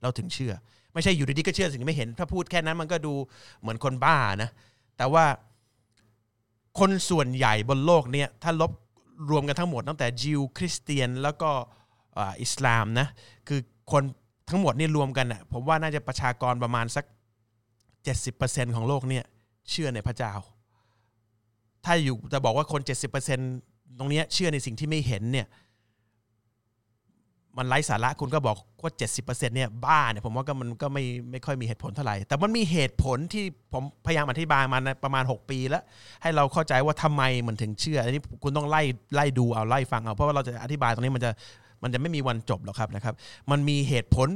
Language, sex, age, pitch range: Thai, male, 30-49, 115-150 Hz